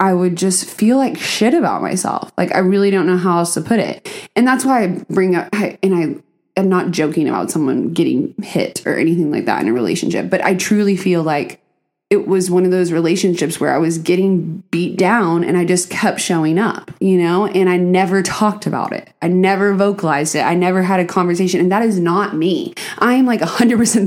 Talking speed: 220 wpm